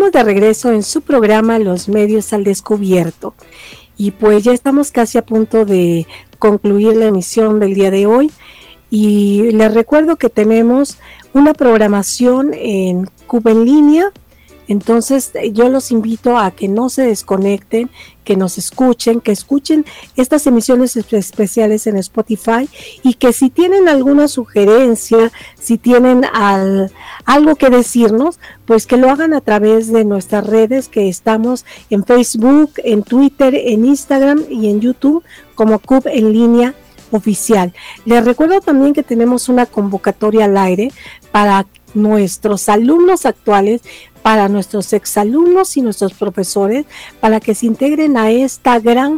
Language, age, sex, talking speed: Spanish, 50-69, female, 140 wpm